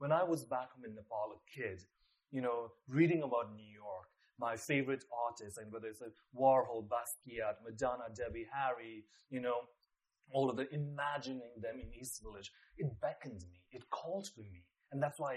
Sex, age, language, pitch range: male, 30-49, English, 110-140 Hz